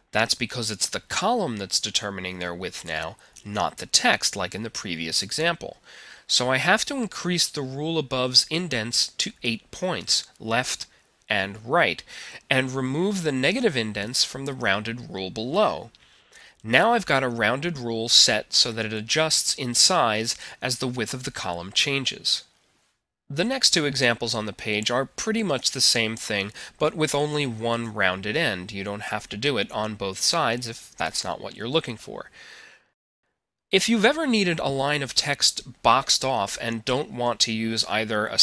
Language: English